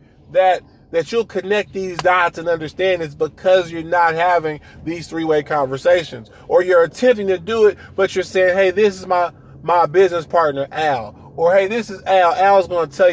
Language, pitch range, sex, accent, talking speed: English, 140-185 Hz, male, American, 190 wpm